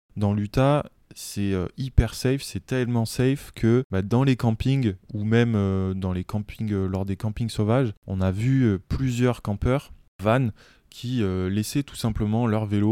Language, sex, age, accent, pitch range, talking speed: French, male, 20-39, French, 100-115 Hz, 180 wpm